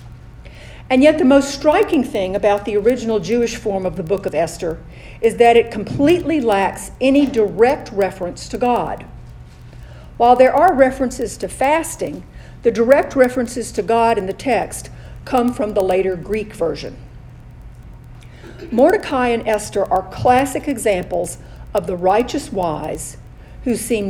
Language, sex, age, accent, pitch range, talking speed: English, female, 50-69, American, 185-255 Hz, 145 wpm